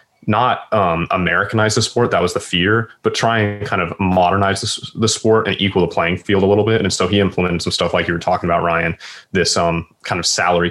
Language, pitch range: English, 90-110 Hz